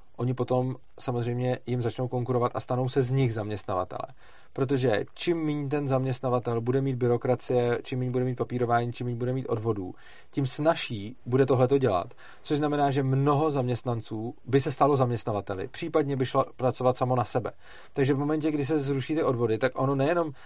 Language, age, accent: Czech, 30-49, native